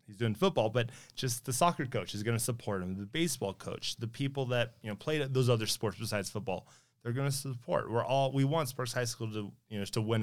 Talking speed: 250 wpm